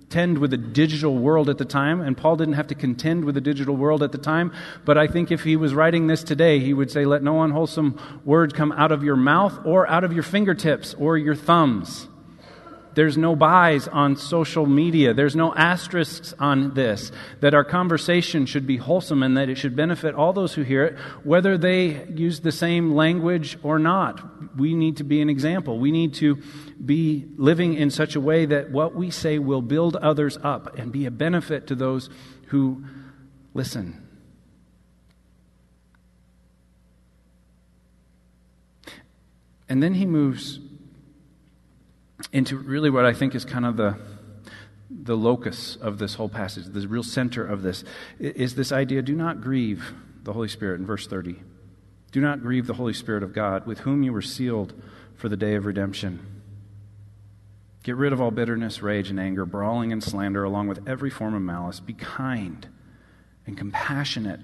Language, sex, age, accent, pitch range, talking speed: English, male, 40-59, American, 105-155 Hz, 175 wpm